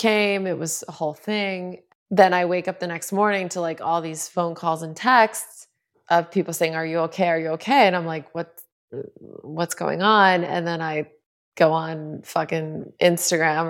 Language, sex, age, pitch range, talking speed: English, female, 20-39, 165-180 Hz, 195 wpm